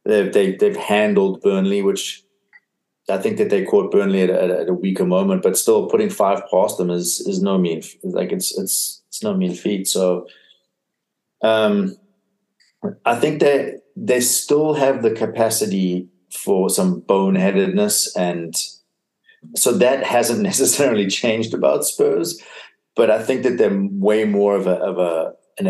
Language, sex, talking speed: English, male, 160 wpm